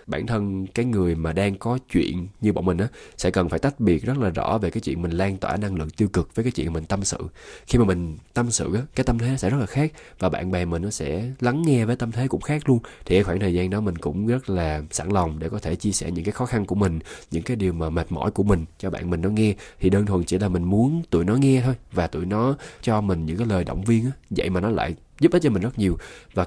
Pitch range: 85-115 Hz